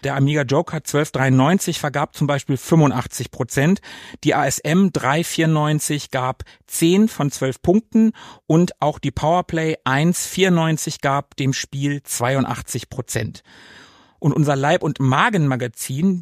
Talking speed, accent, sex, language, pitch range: 110 wpm, German, male, German, 135-185 Hz